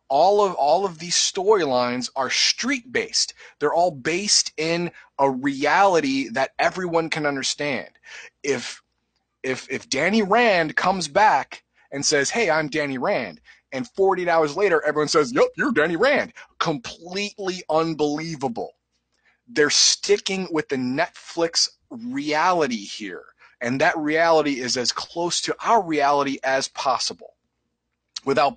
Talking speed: 130 wpm